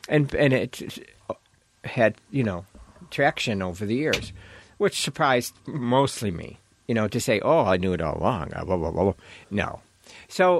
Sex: male